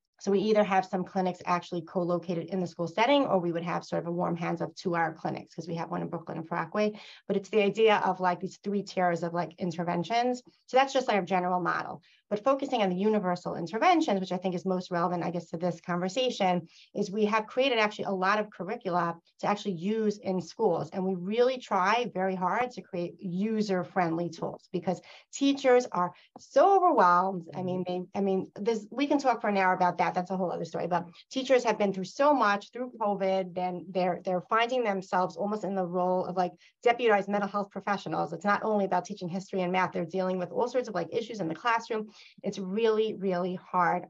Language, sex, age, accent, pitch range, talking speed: English, female, 30-49, American, 180-215 Hz, 220 wpm